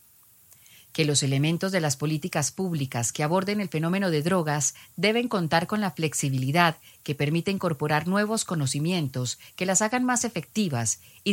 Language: Spanish